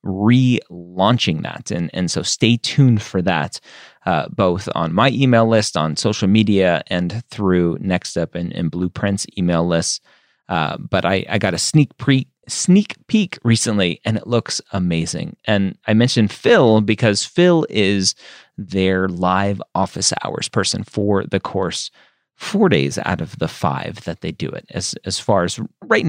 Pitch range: 90-125 Hz